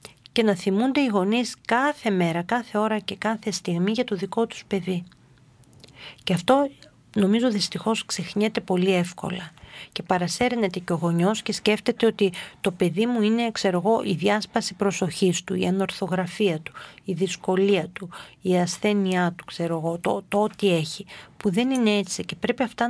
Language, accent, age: Greek, native, 40-59